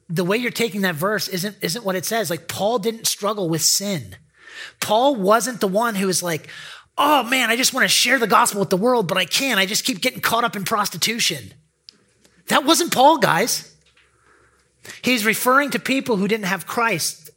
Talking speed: 205 wpm